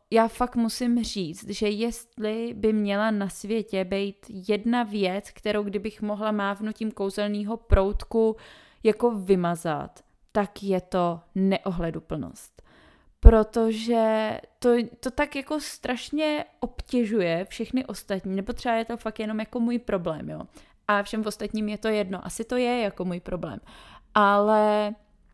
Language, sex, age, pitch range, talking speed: Czech, female, 20-39, 195-215 Hz, 135 wpm